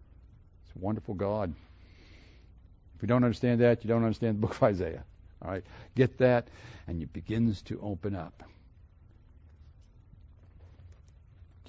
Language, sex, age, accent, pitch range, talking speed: English, male, 60-79, American, 90-125 Hz, 130 wpm